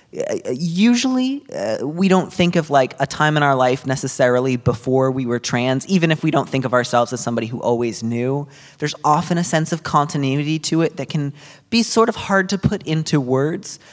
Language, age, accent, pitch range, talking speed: English, 30-49, American, 120-160 Hz, 205 wpm